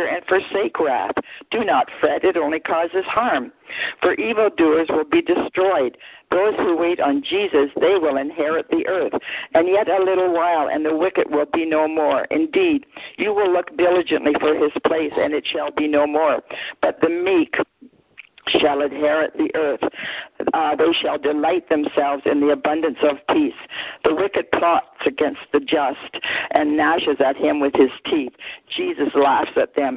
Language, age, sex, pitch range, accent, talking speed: English, 60-79, female, 150-205 Hz, American, 170 wpm